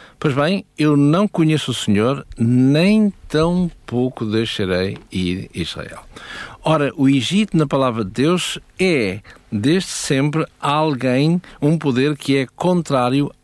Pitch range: 110-145 Hz